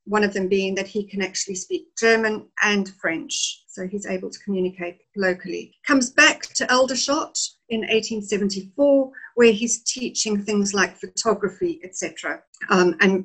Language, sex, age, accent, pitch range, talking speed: English, female, 50-69, British, 195-240 Hz, 145 wpm